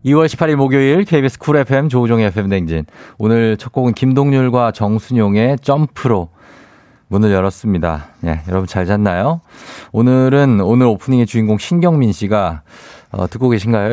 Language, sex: Korean, male